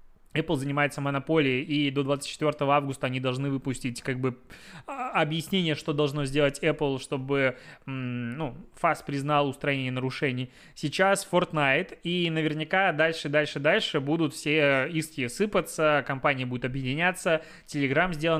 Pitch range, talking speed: 140-170 Hz, 135 wpm